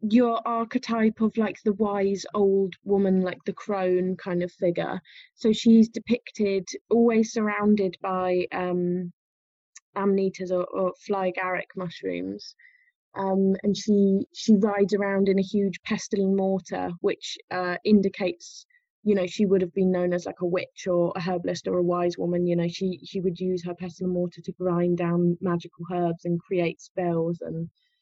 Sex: female